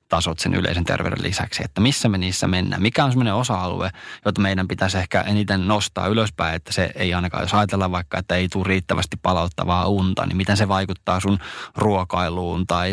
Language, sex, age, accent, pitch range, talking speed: Finnish, male, 20-39, native, 90-105 Hz, 190 wpm